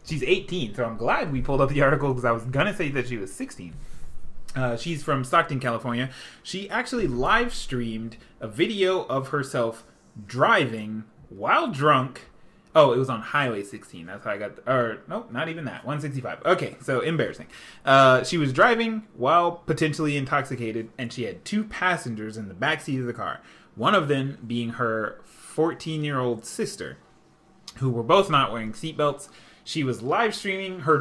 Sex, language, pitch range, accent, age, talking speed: male, English, 120-155 Hz, American, 20-39, 170 wpm